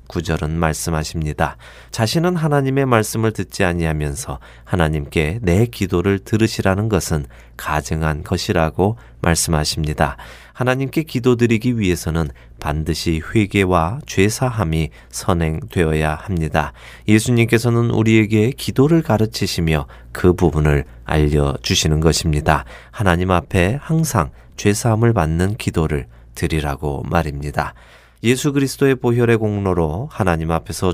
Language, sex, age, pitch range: Korean, male, 30-49, 80-110 Hz